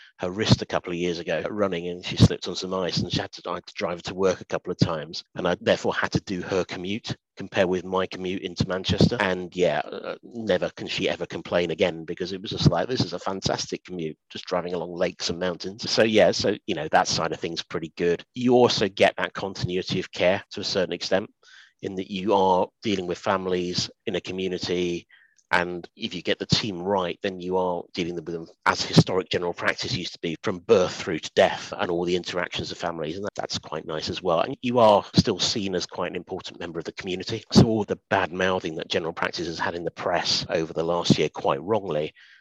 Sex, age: male, 40-59